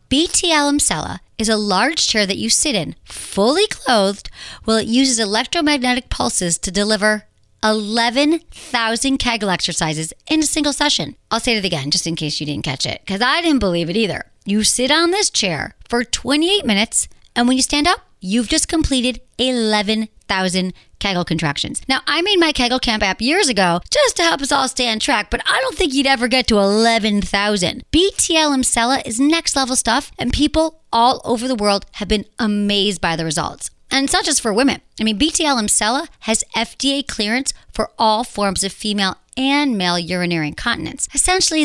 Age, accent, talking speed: 40-59, American, 185 wpm